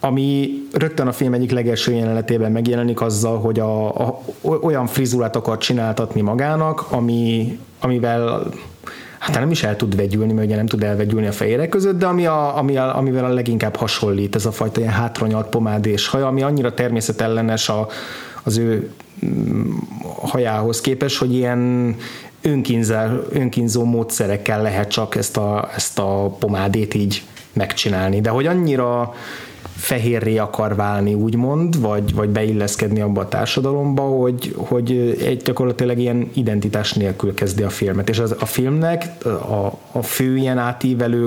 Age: 30-49